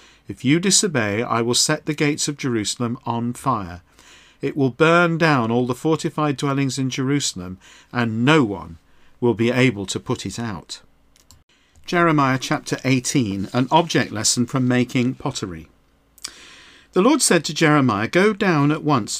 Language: English